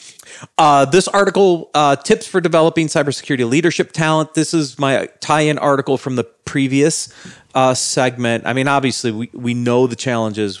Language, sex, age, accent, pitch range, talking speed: English, male, 40-59, American, 105-150 Hz, 160 wpm